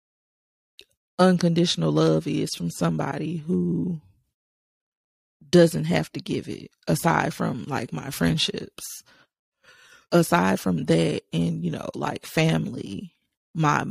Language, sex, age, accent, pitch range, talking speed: English, female, 30-49, American, 140-195 Hz, 110 wpm